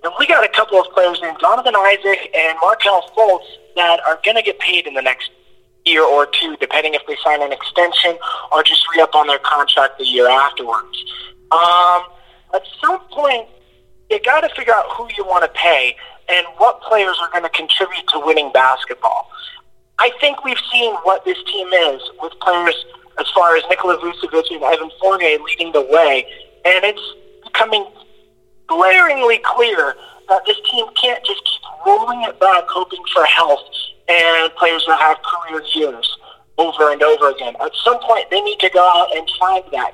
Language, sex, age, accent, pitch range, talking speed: English, male, 30-49, American, 155-245 Hz, 185 wpm